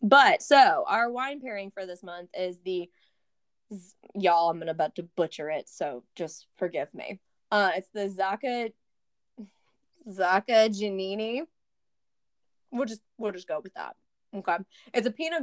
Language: English